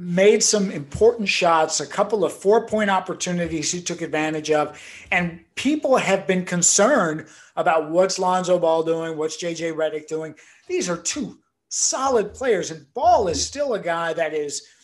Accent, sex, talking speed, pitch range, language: American, male, 160 wpm, 165-205 Hz, English